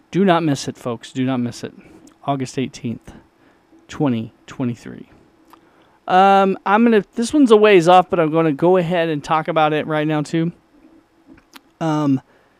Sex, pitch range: male, 130-185 Hz